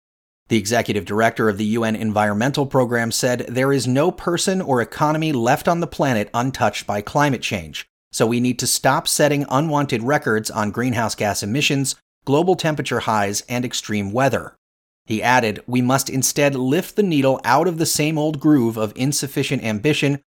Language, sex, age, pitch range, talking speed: English, male, 30-49, 110-145 Hz, 170 wpm